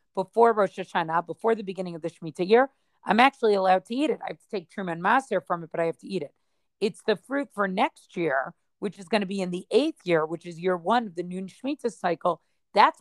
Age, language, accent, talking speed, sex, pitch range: 40-59, English, American, 255 wpm, female, 185-230 Hz